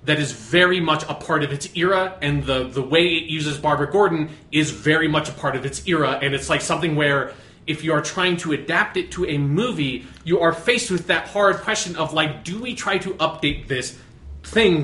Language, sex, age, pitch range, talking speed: English, male, 30-49, 135-175 Hz, 225 wpm